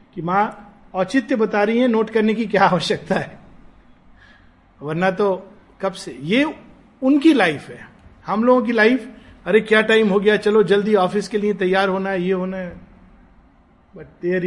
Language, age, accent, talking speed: Hindi, 50-69, native, 175 wpm